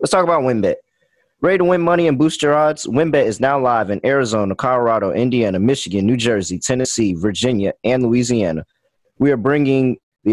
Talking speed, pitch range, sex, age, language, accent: 180 wpm, 100-135 Hz, male, 20-39, English, American